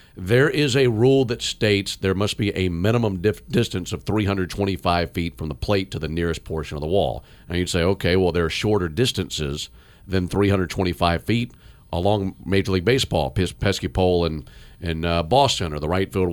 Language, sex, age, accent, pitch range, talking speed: English, male, 50-69, American, 85-110 Hz, 195 wpm